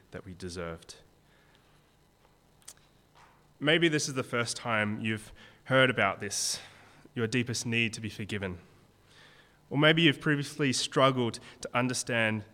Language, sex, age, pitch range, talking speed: English, male, 20-39, 105-130 Hz, 125 wpm